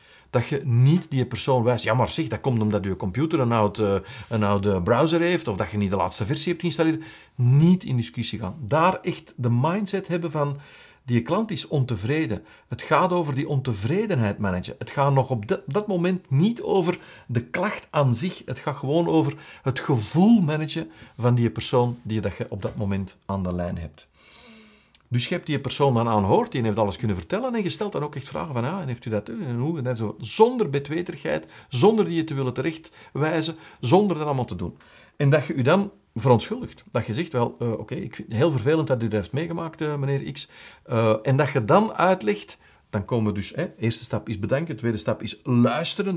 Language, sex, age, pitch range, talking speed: Dutch, male, 50-69, 115-165 Hz, 220 wpm